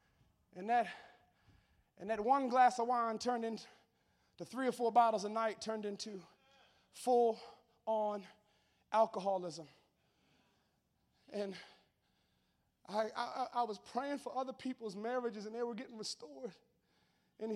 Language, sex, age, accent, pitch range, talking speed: English, male, 30-49, American, 210-240 Hz, 120 wpm